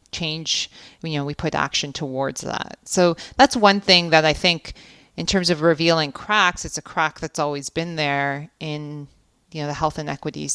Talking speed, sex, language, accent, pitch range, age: 190 wpm, female, English, American, 150-175 Hz, 30-49